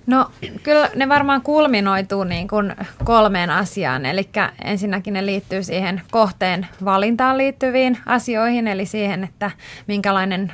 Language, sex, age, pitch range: Finnish, female, 20-39, 180-205 Hz